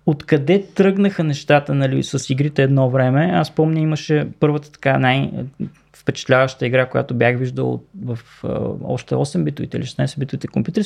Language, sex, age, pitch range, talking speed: Bulgarian, male, 20-39, 130-160 Hz, 155 wpm